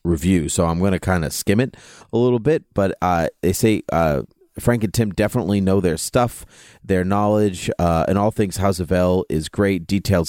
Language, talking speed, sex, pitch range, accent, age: English, 210 wpm, male, 85-100 Hz, American, 30-49